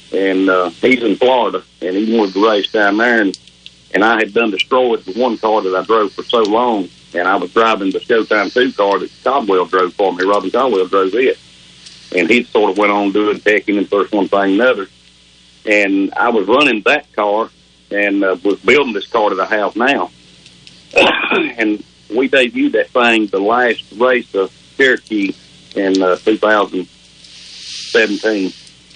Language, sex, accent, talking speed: English, male, American, 185 wpm